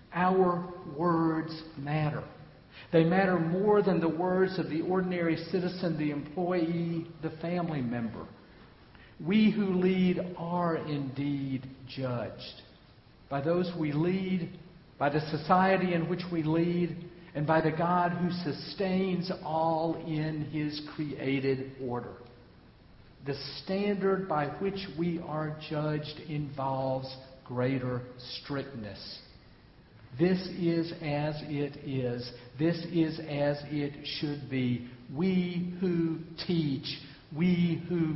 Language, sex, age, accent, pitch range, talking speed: English, male, 50-69, American, 130-170 Hz, 115 wpm